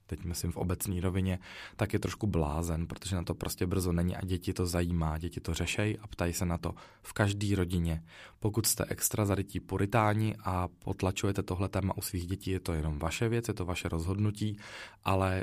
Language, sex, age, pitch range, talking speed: Czech, male, 20-39, 95-105 Hz, 200 wpm